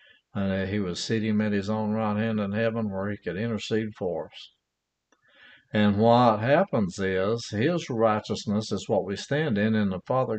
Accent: American